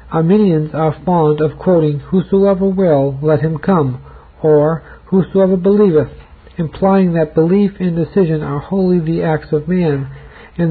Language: English